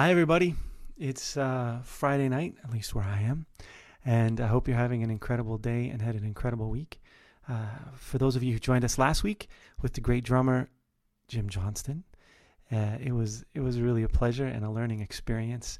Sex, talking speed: male, 200 wpm